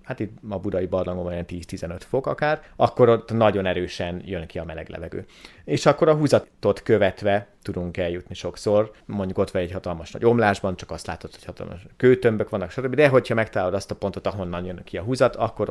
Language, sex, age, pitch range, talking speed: Hungarian, male, 30-49, 90-125 Hz, 205 wpm